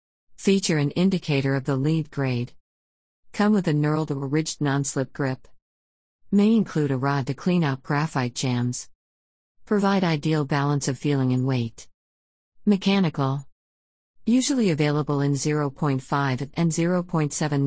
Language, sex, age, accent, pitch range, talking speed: English, female, 50-69, American, 130-165 Hz, 130 wpm